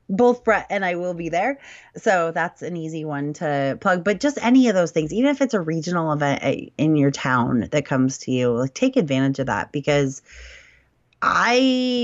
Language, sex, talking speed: English, female, 195 wpm